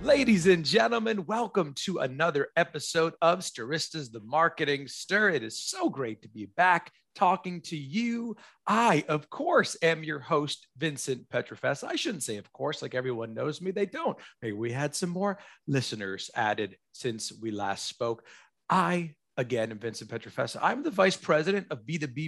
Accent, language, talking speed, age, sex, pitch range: American, English, 170 wpm, 40-59, male, 135-210 Hz